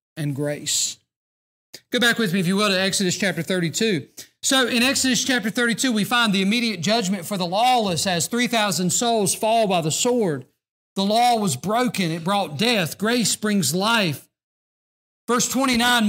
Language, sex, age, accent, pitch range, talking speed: English, male, 40-59, American, 165-215 Hz, 170 wpm